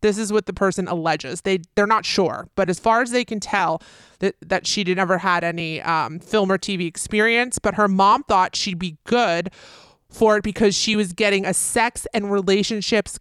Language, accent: English, American